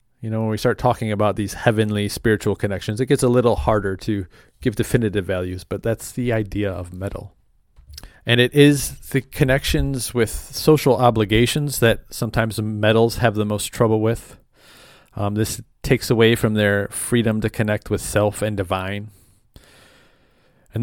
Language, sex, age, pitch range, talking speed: English, male, 30-49, 100-120 Hz, 160 wpm